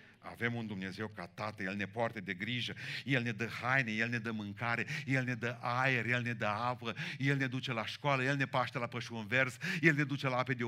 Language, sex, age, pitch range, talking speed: Romanian, male, 50-69, 115-145 Hz, 245 wpm